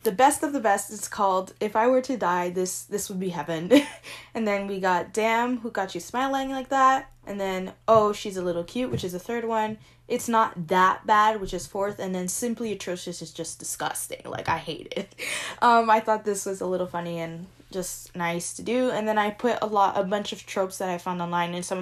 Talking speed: 240 wpm